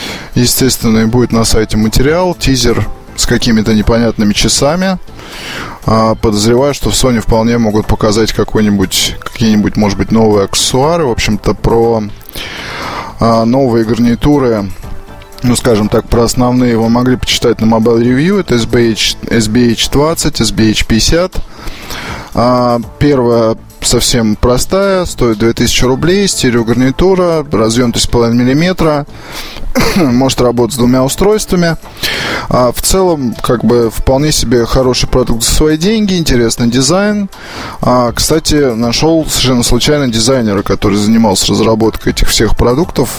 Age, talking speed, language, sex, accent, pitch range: 20-39, 115 wpm, Russian, male, native, 110-135 Hz